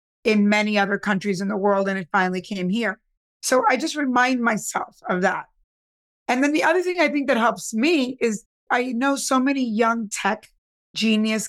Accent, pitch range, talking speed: American, 215-265 Hz, 195 wpm